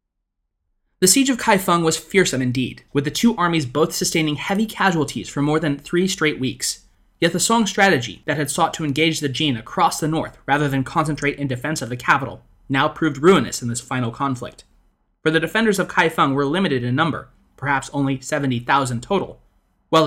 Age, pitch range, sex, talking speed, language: 20-39, 130-165 Hz, male, 190 wpm, English